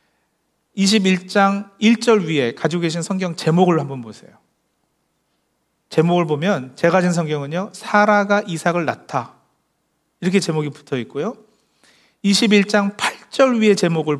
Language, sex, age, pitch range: Korean, male, 40-59, 150-205 Hz